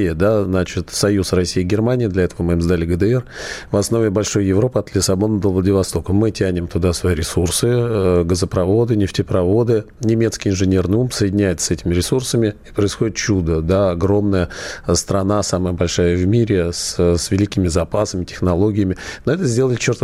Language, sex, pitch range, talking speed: Russian, male, 90-110 Hz, 160 wpm